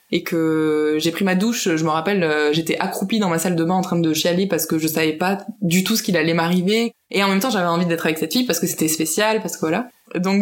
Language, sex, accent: French, female, French